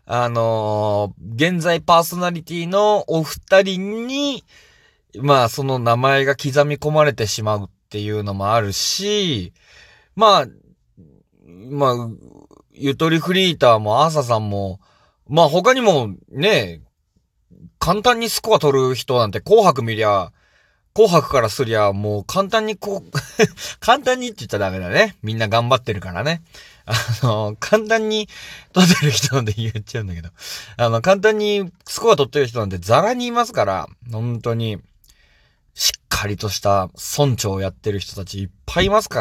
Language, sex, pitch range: Japanese, male, 100-165 Hz